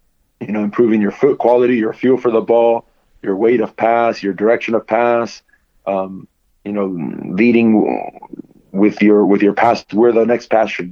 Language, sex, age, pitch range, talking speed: English, male, 30-49, 105-120 Hz, 180 wpm